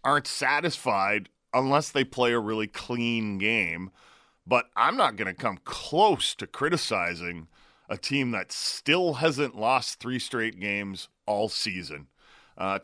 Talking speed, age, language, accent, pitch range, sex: 140 wpm, 40-59, English, American, 105-130 Hz, male